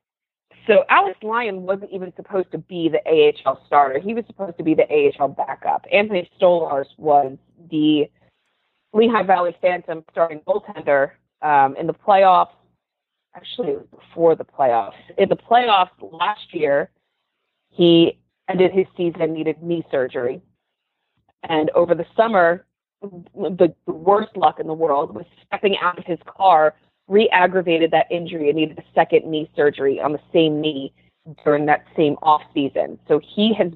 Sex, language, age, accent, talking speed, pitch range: female, English, 30-49, American, 150 wpm, 160-215 Hz